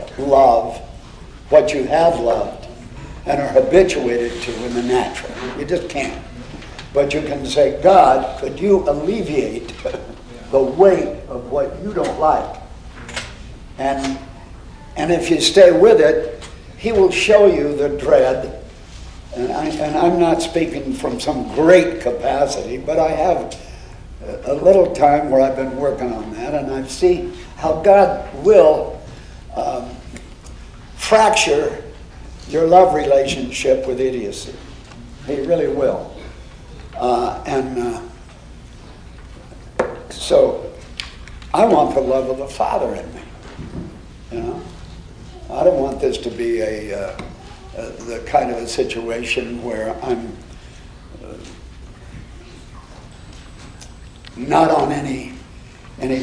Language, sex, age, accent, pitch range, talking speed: English, male, 60-79, American, 120-180 Hz, 125 wpm